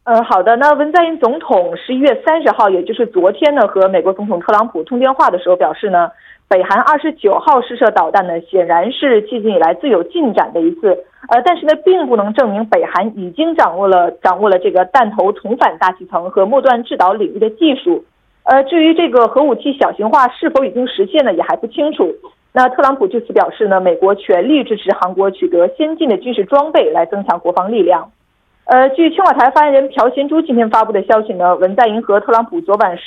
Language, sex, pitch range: Korean, female, 190-295 Hz